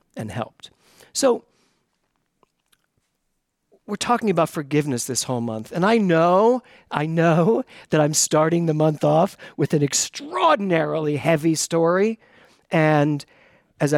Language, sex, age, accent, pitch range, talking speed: English, male, 50-69, American, 140-175 Hz, 120 wpm